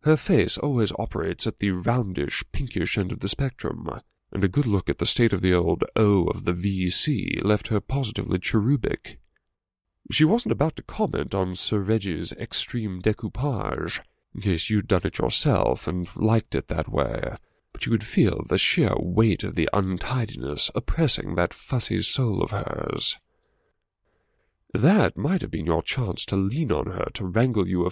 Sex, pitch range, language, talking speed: male, 95-125 Hz, English, 175 wpm